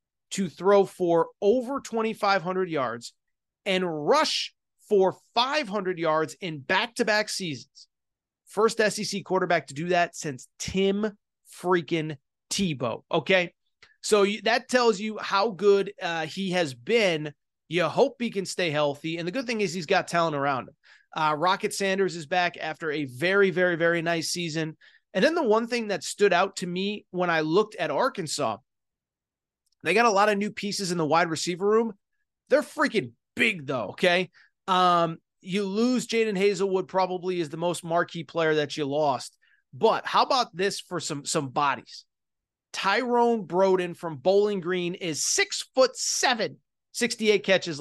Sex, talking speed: male, 160 wpm